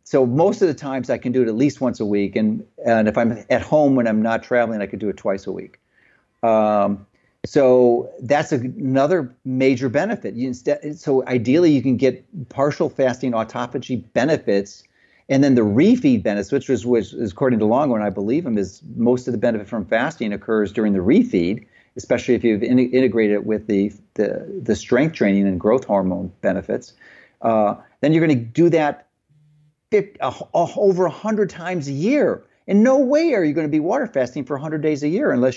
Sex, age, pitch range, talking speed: male, 40-59, 115-150 Hz, 200 wpm